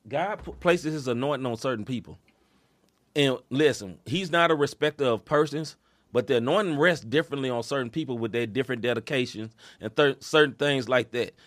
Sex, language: male, English